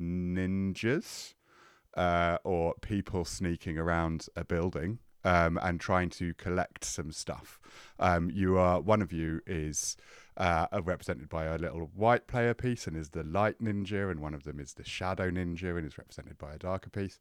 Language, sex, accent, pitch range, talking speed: English, male, British, 85-120 Hz, 175 wpm